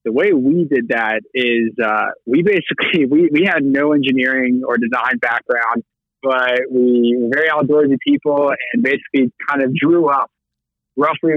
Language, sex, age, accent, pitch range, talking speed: English, male, 20-39, American, 125-145 Hz, 160 wpm